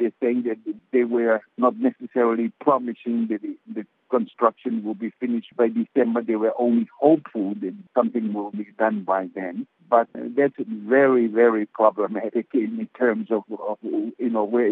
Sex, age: male, 60-79